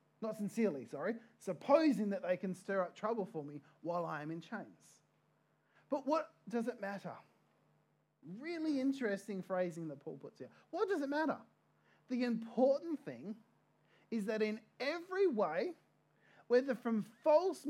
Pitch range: 175-245 Hz